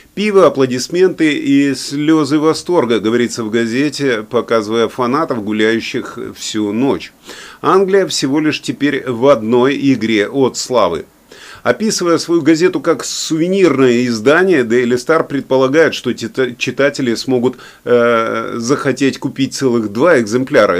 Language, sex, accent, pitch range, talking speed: Russian, male, native, 120-155 Hz, 115 wpm